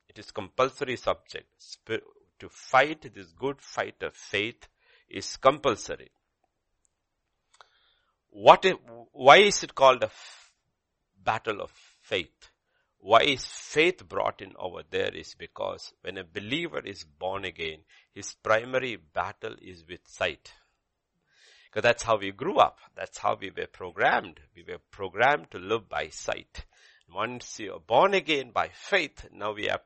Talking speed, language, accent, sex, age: 140 wpm, English, Indian, male, 60-79